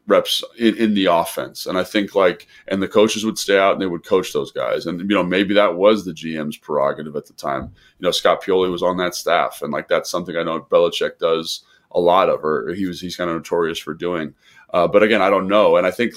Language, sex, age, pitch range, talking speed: English, male, 20-39, 90-110 Hz, 260 wpm